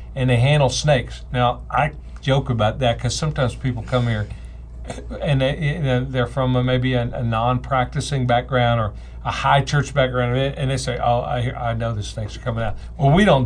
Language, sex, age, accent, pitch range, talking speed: English, male, 50-69, American, 115-140 Hz, 180 wpm